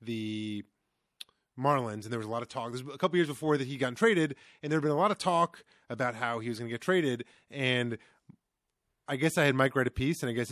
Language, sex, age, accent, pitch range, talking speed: English, male, 30-49, American, 115-145 Hz, 250 wpm